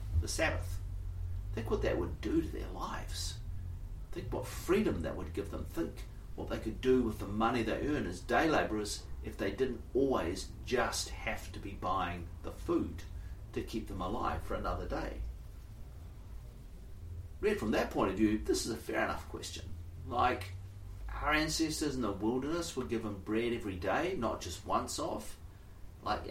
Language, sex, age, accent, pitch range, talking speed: English, male, 40-59, Australian, 90-110 Hz, 175 wpm